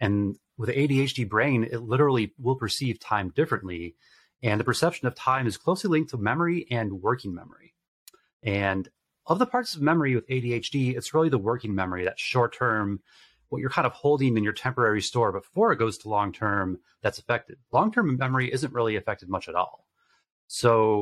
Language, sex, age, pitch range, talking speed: English, male, 30-49, 105-130 Hz, 180 wpm